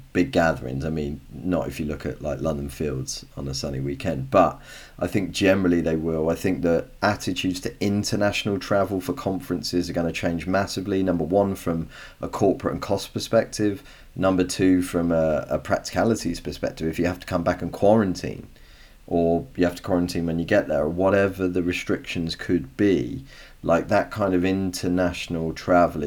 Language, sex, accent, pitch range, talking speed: English, male, British, 80-95 Hz, 180 wpm